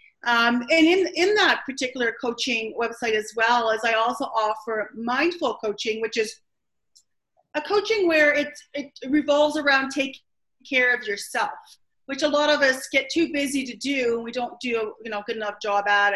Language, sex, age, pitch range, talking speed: English, female, 40-59, 220-280 Hz, 180 wpm